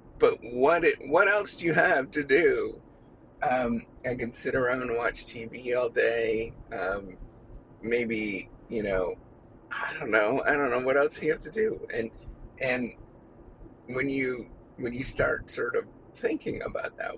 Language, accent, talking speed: English, American, 170 wpm